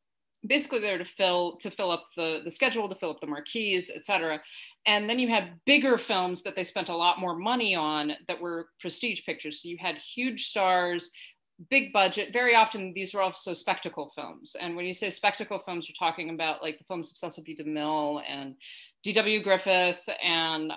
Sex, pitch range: female, 165-205 Hz